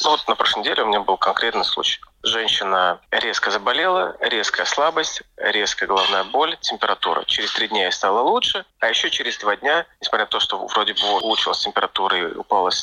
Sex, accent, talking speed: male, native, 185 wpm